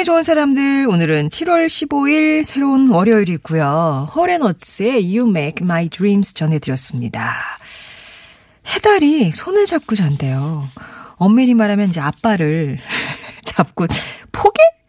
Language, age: Korean, 40-59